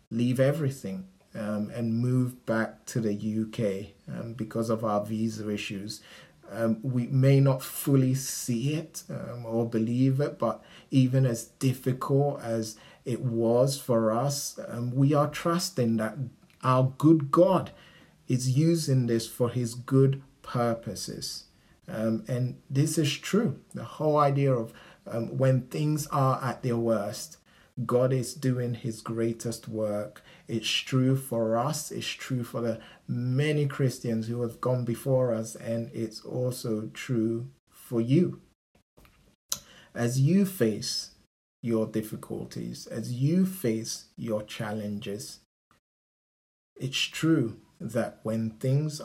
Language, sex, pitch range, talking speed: English, male, 110-135 Hz, 130 wpm